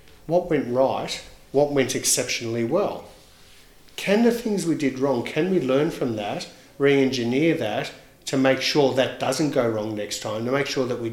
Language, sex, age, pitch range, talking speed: English, male, 50-69, 115-140 Hz, 190 wpm